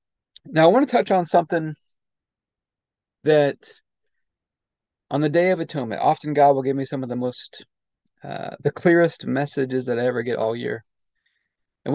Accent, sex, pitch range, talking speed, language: American, male, 125-160 Hz, 165 wpm, English